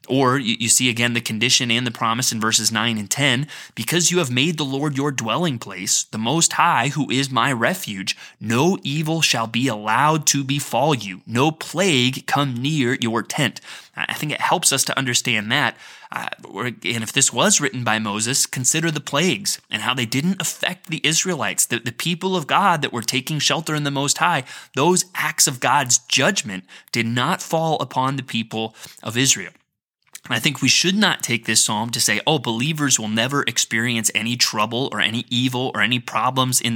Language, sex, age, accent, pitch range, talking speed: English, male, 20-39, American, 115-150 Hz, 195 wpm